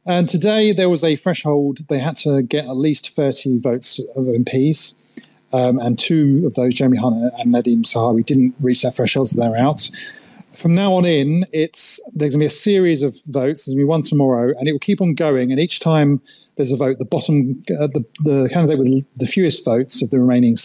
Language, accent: English, British